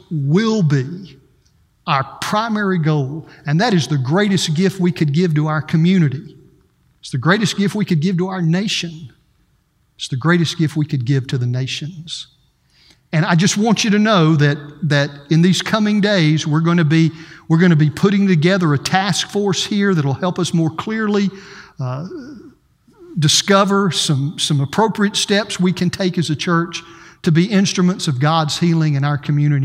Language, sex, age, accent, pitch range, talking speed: English, male, 50-69, American, 140-180 Hz, 185 wpm